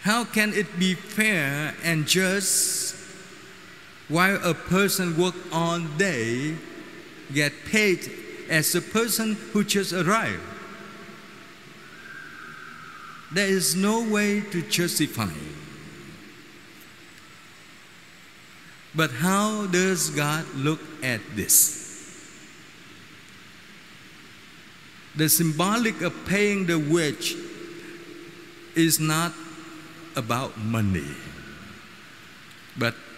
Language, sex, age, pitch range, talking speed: Vietnamese, male, 50-69, 135-185 Hz, 80 wpm